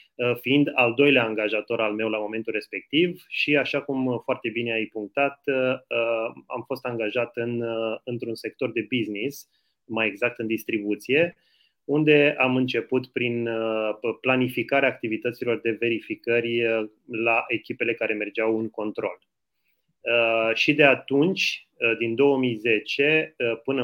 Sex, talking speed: male, 120 wpm